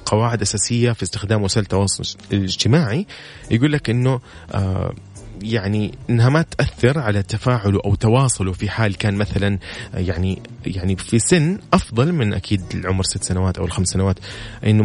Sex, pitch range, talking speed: male, 100-125 Hz, 145 wpm